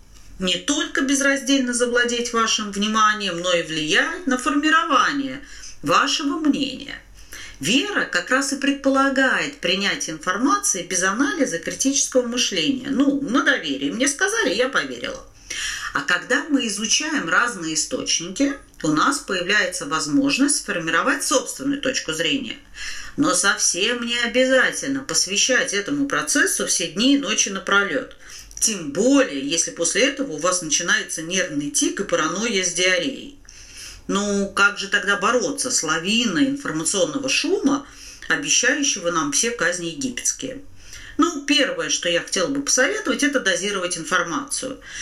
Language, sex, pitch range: Russian, female, 190-280 Hz